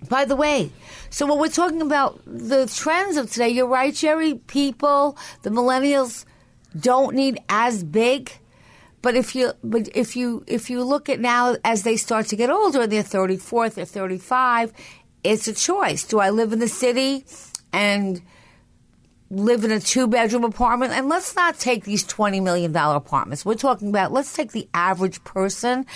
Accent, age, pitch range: American, 50-69, 190-260 Hz